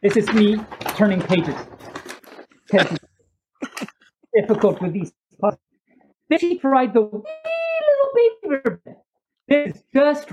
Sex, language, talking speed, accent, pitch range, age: male, English, 115 wpm, American, 190-295 Hz, 40-59